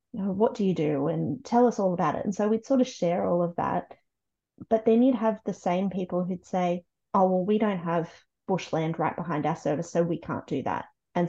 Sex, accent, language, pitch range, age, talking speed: female, Australian, English, 170-215 Hz, 30-49, 235 wpm